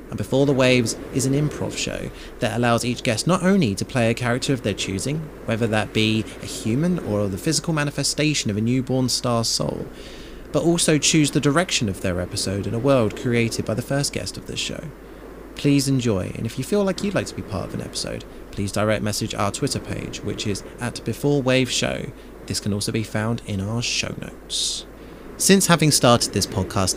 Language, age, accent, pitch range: English, 20-39, British, 105-135 Hz